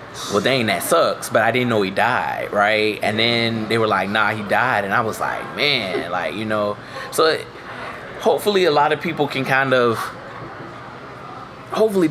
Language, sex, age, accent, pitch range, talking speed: English, male, 20-39, American, 105-125 Hz, 190 wpm